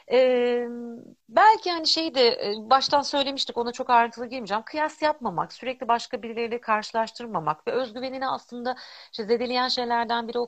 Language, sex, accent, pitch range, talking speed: Turkish, female, native, 215-275 Hz, 150 wpm